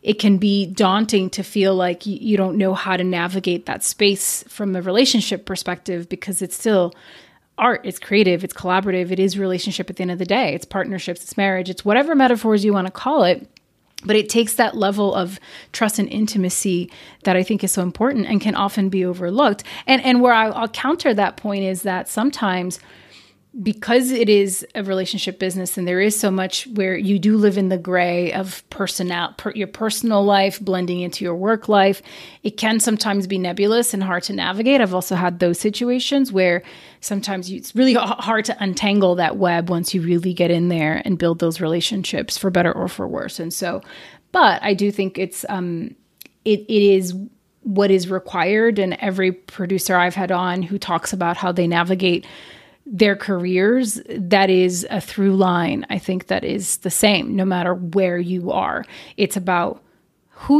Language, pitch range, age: English, 185-210 Hz, 30-49